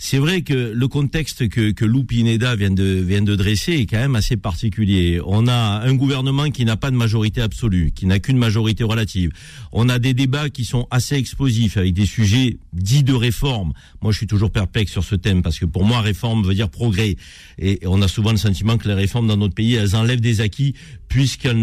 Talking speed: 225 wpm